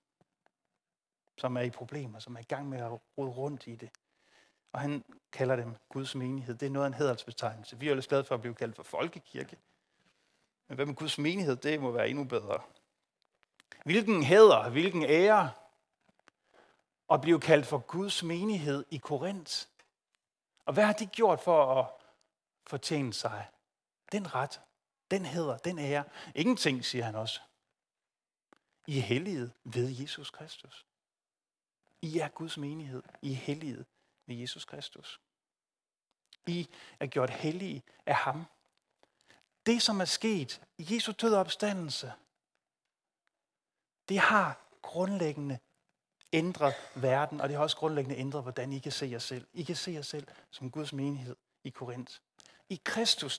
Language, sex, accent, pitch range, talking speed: Danish, male, native, 130-175 Hz, 150 wpm